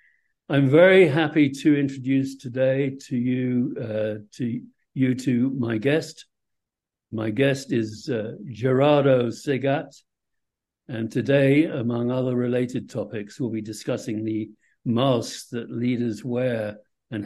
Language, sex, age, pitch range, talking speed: English, male, 60-79, 120-145 Hz, 120 wpm